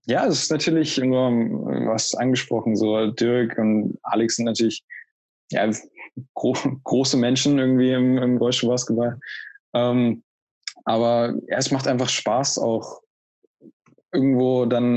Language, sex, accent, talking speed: German, male, German, 130 wpm